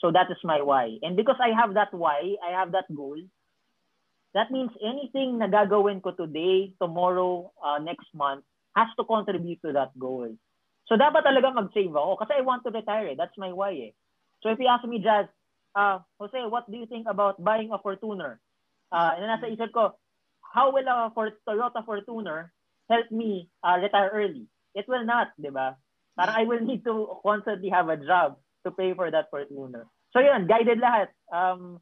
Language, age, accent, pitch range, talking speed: English, 30-49, Filipino, 160-225 Hz, 195 wpm